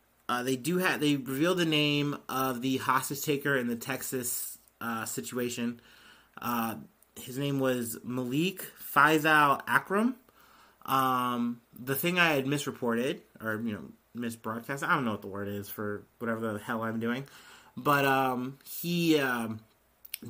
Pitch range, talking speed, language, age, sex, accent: 115-135 Hz, 150 wpm, English, 30-49, male, American